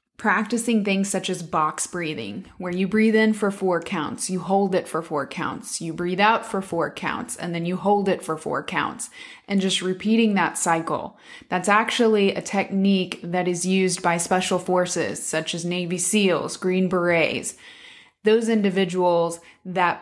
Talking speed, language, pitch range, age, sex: 170 wpm, English, 175-205 Hz, 20-39, female